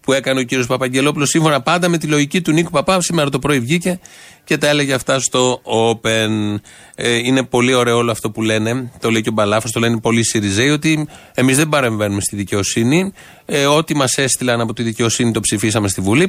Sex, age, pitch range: male, 30-49, 120-150 Hz